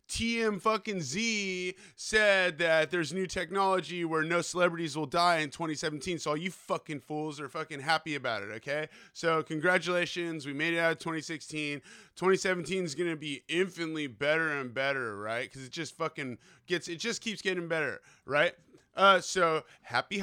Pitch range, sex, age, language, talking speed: 155-185 Hz, male, 20-39, English, 170 wpm